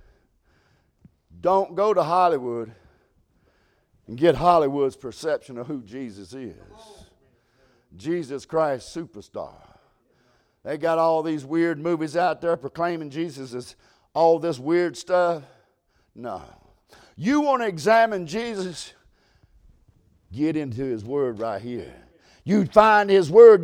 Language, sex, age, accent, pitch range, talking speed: English, male, 50-69, American, 165-235 Hz, 115 wpm